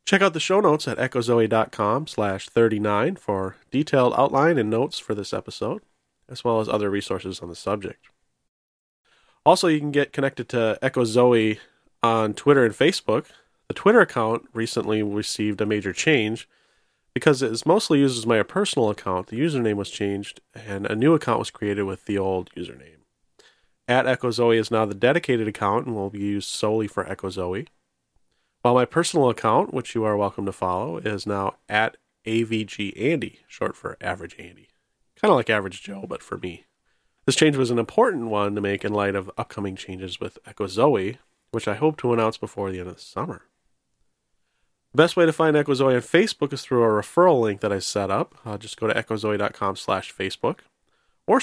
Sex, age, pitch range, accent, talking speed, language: male, 30-49, 100-130 Hz, American, 185 wpm, English